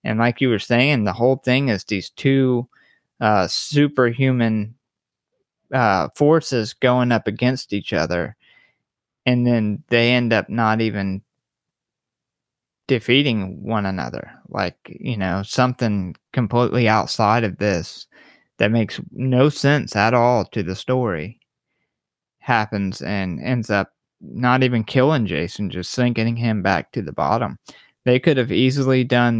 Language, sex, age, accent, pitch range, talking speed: English, male, 20-39, American, 105-125 Hz, 135 wpm